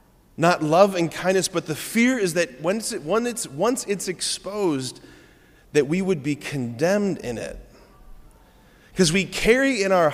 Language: English